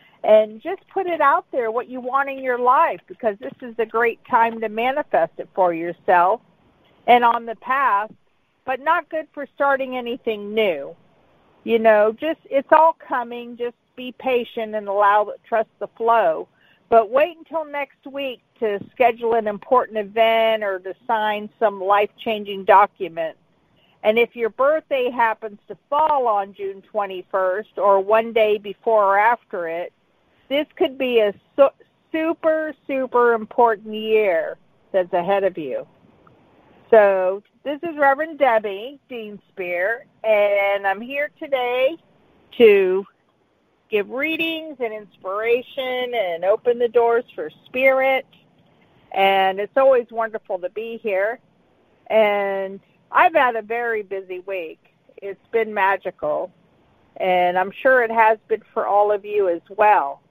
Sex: female